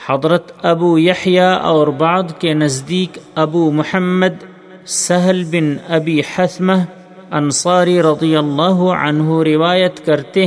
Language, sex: Urdu, male